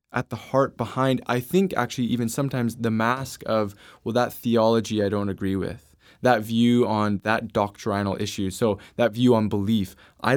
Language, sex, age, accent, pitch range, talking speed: English, male, 20-39, American, 100-125 Hz, 180 wpm